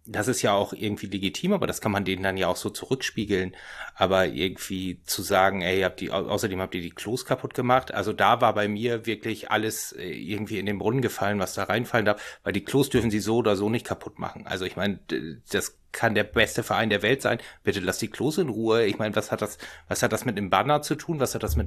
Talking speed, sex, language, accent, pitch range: 255 wpm, male, German, German, 100-115 Hz